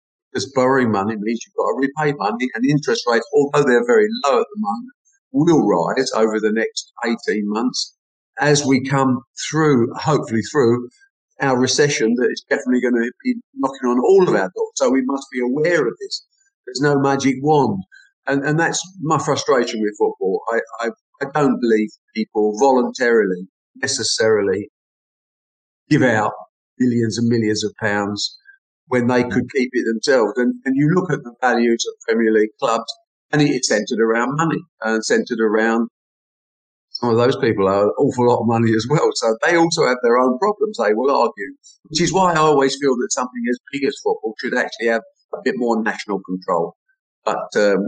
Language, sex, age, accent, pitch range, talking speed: English, male, 50-69, British, 115-180 Hz, 185 wpm